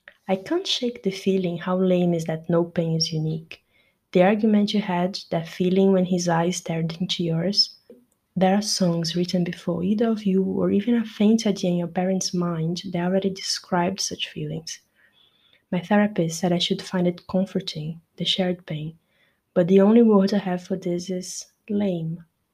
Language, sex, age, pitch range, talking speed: Portuguese, female, 20-39, 170-190 Hz, 180 wpm